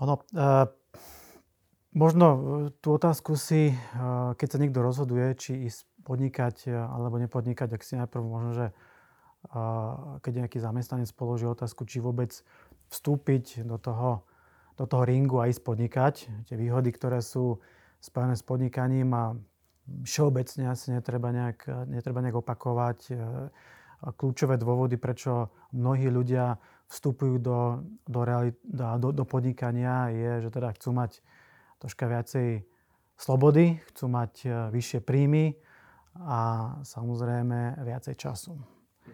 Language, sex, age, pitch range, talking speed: Slovak, male, 30-49, 120-145 Hz, 120 wpm